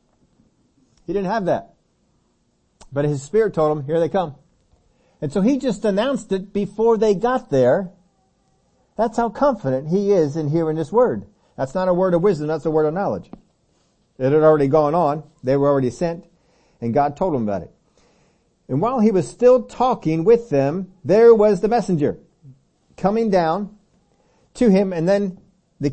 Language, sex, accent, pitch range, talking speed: English, male, American, 140-190 Hz, 175 wpm